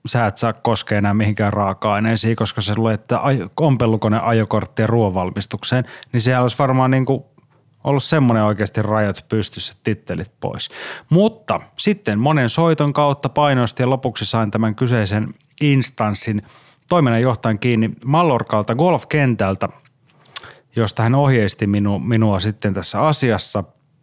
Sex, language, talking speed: male, Finnish, 125 wpm